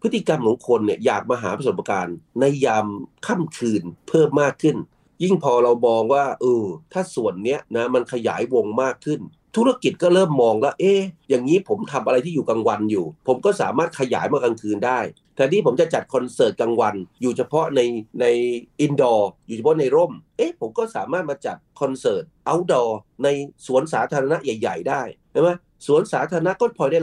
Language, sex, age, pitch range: Thai, male, 30-49, 120-180 Hz